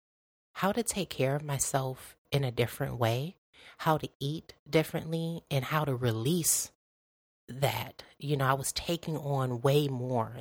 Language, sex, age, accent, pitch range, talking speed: English, female, 30-49, American, 125-150 Hz, 155 wpm